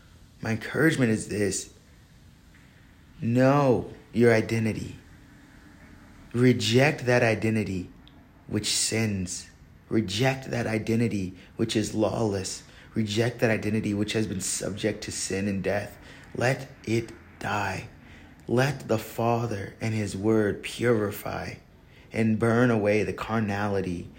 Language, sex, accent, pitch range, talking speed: English, male, American, 100-120 Hz, 110 wpm